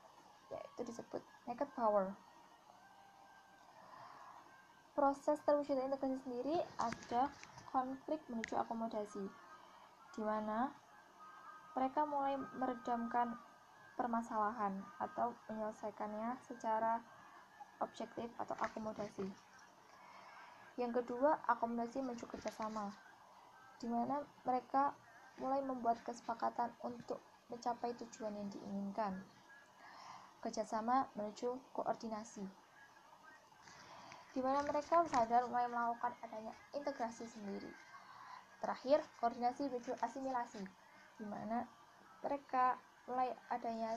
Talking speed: 80 wpm